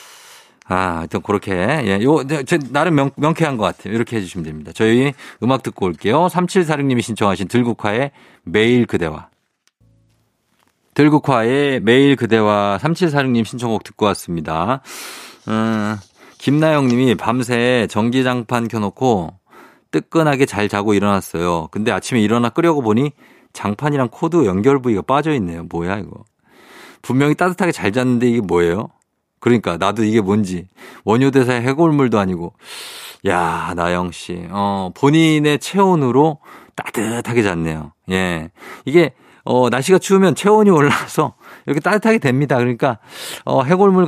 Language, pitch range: Korean, 105-150 Hz